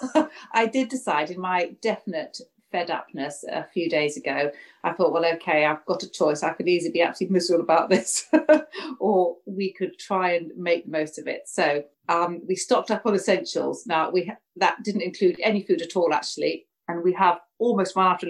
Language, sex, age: English, female, 40-59